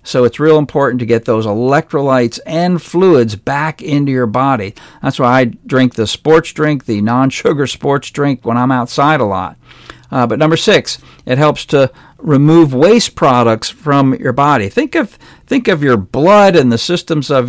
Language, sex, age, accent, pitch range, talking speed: English, male, 50-69, American, 120-160 Hz, 180 wpm